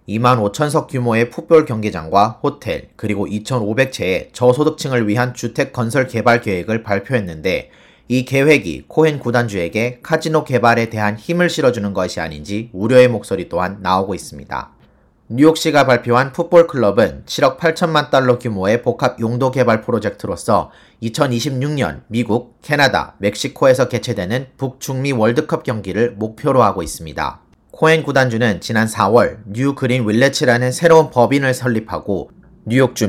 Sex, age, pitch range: male, 30-49, 110-145 Hz